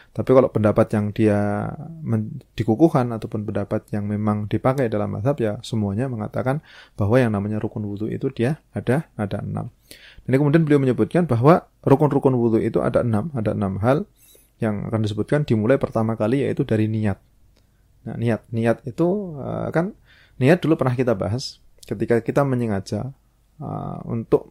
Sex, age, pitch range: male, 30-49, 110-140 Hz